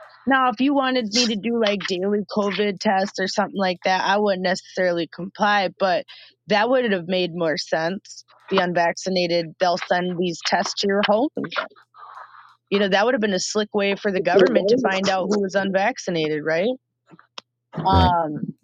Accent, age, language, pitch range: American, 30-49, English, 160-205 Hz